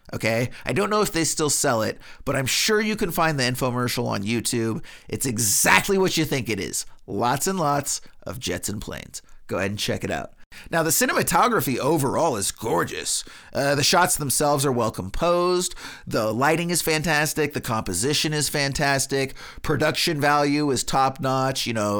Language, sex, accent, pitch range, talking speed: English, male, American, 130-180 Hz, 185 wpm